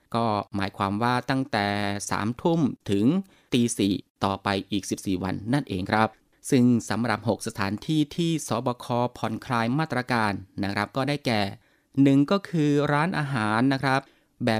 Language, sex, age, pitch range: Thai, male, 20-39, 110-140 Hz